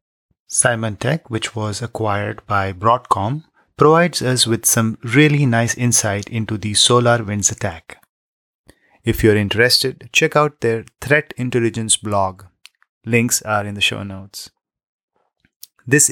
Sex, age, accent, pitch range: male, 30-49, Indian, 100-125 Hz